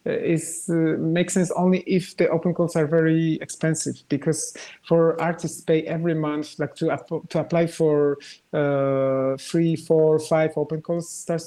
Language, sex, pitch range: Portuguese, male, 145-170 Hz